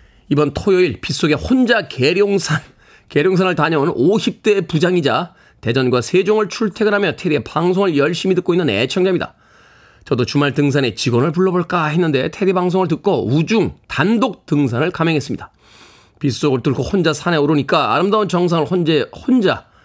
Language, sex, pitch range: Korean, male, 140-185 Hz